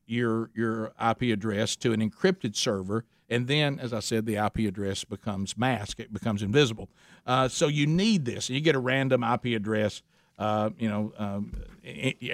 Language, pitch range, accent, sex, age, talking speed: English, 120-160 Hz, American, male, 50-69, 175 wpm